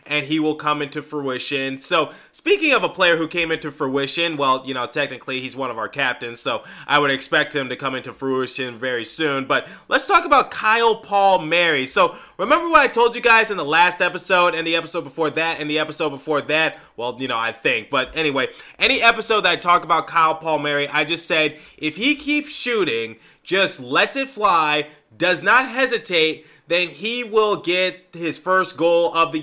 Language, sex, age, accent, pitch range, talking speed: English, male, 20-39, American, 150-190 Hz, 210 wpm